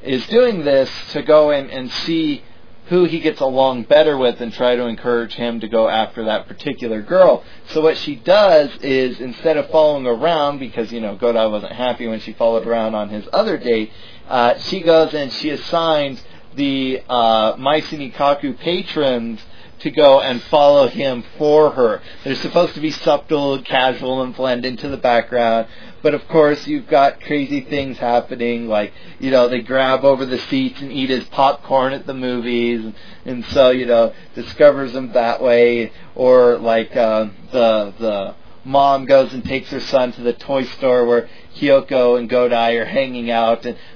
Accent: American